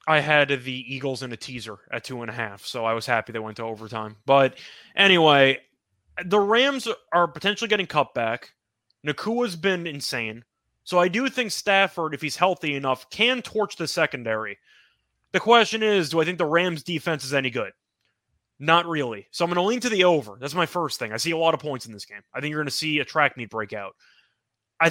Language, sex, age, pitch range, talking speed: English, male, 20-39, 130-180 Hz, 220 wpm